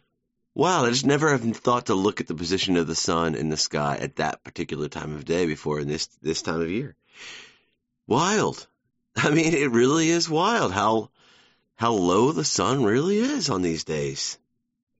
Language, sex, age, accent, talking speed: English, male, 30-49, American, 190 wpm